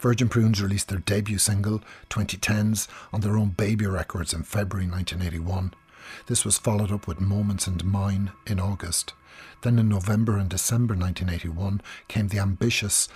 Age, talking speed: 50-69, 155 wpm